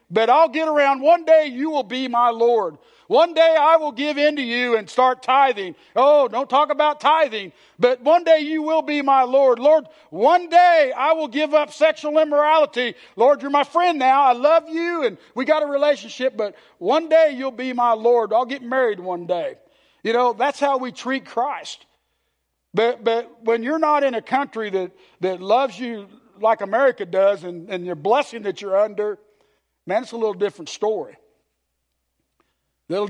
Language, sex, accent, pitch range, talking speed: English, male, American, 185-280 Hz, 190 wpm